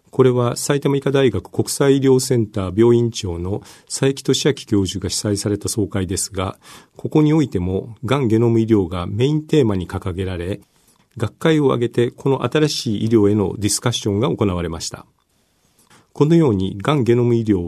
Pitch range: 100-145 Hz